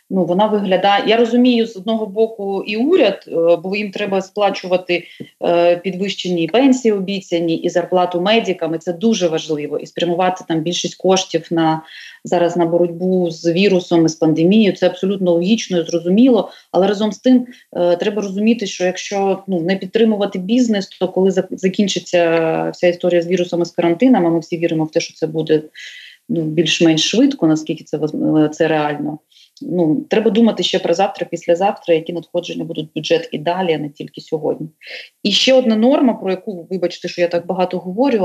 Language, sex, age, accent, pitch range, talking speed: Ukrainian, female, 30-49, native, 170-210 Hz, 175 wpm